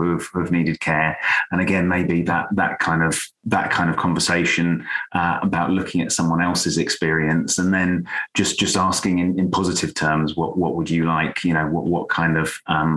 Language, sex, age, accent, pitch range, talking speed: English, male, 30-49, British, 80-85 Hz, 200 wpm